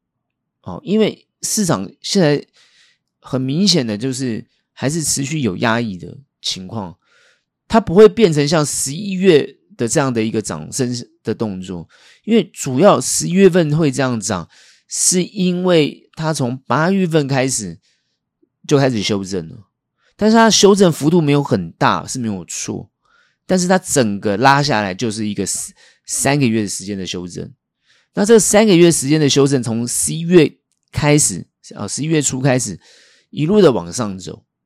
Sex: male